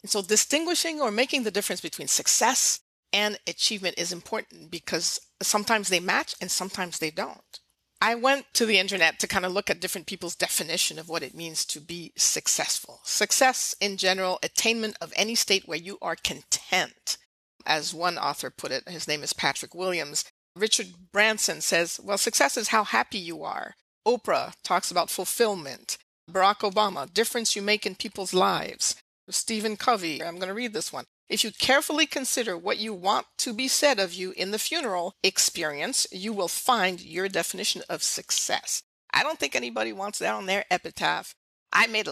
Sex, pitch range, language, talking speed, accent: female, 180-230 Hz, English, 180 wpm, American